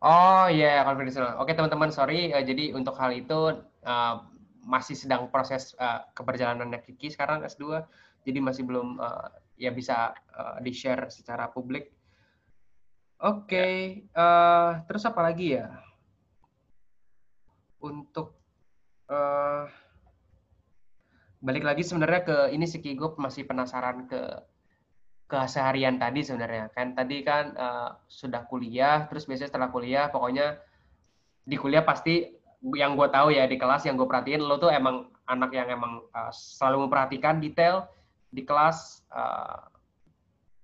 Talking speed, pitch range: 135 wpm, 125-150 Hz